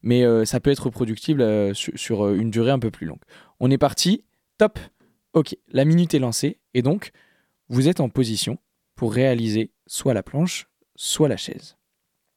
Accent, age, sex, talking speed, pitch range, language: French, 20-39, male, 170 wpm, 110-140 Hz, French